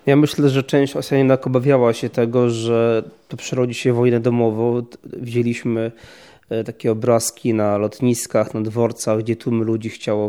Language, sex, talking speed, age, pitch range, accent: Polish, male, 150 wpm, 20-39, 115-130 Hz, native